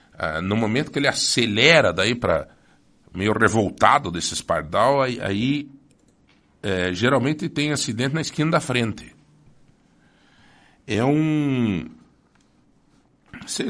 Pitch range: 95-140 Hz